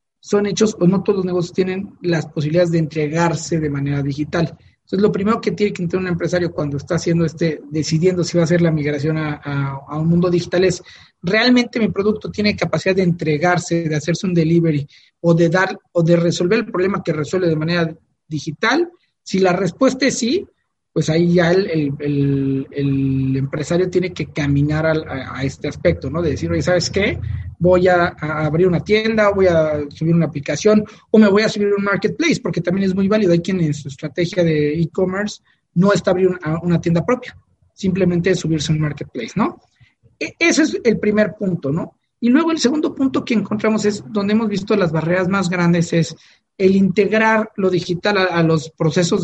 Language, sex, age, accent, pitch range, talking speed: Spanish, male, 40-59, Mexican, 160-200 Hz, 205 wpm